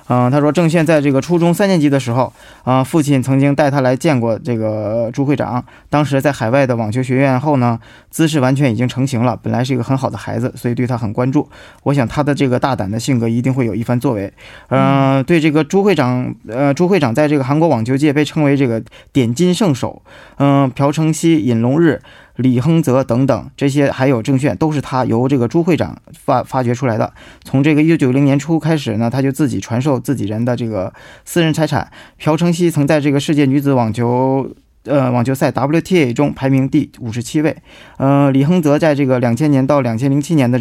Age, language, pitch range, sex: 20-39, Korean, 120-150 Hz, male